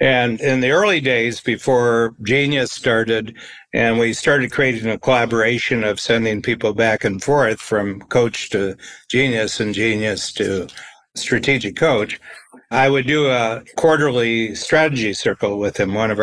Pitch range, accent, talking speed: 115-140 Hz, American, 150 wpm